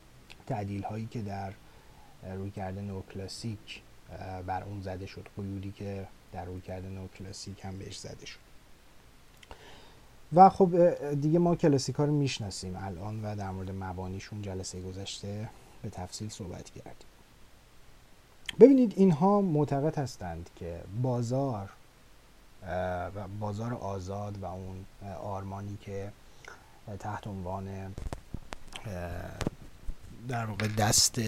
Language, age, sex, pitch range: Persian, 30-49, male, 95-110 Hz